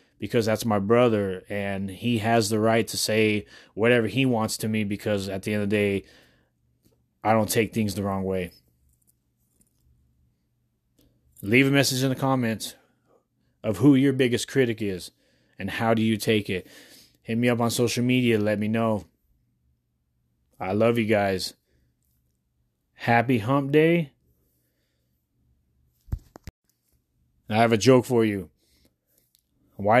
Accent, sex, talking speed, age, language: American, male, 140 wpm, 30-49, English